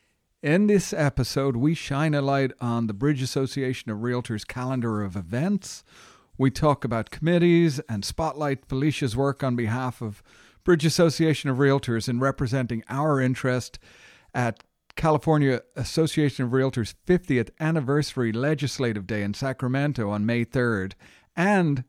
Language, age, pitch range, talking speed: English, 50-69, 115-150 Hz, 135 wpm